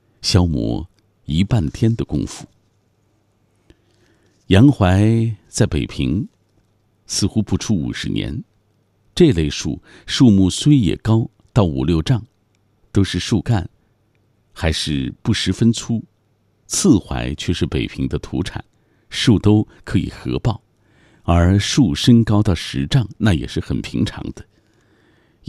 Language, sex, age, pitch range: Chinese, male, 50-69, 90-115 Hz